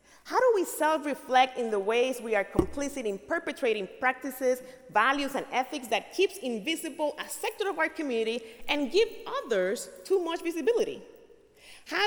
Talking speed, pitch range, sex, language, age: 155 wpm, 220-305 Hz, female, English, 30-49